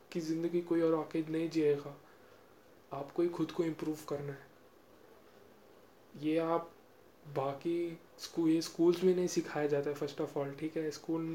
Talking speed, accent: 165 wpm, native